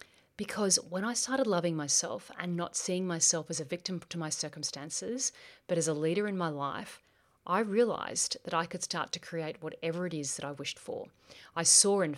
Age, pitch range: 40-59, 150-180 Hz